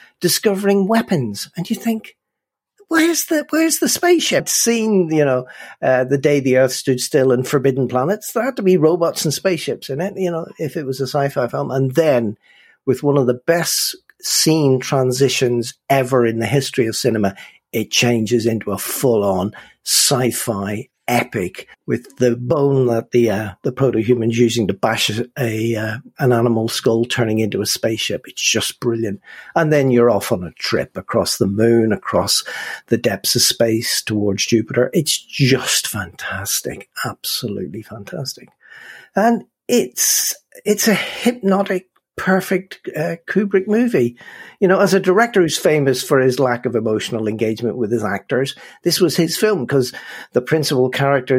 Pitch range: 120-170 Hz